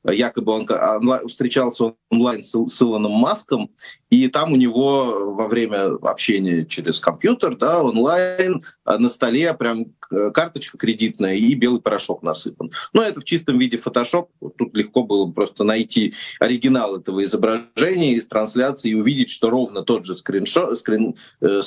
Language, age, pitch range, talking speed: Russian, 30-49, 110-145 Hz, 145 wpm